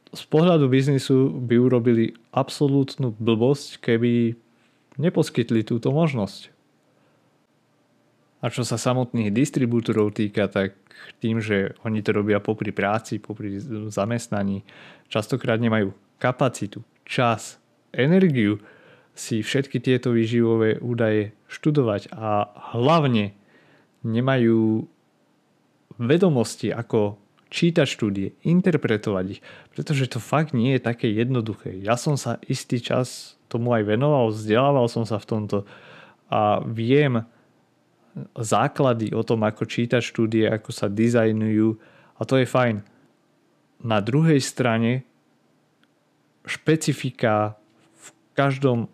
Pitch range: 105-130 Hz